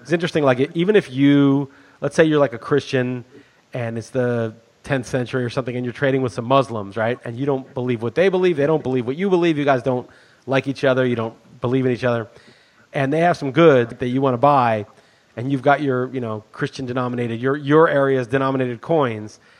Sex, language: male, English